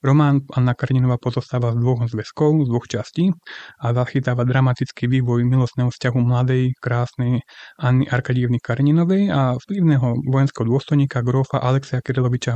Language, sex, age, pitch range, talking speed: Slovak, male, 30-49, 125-140 Hz, 135 wpm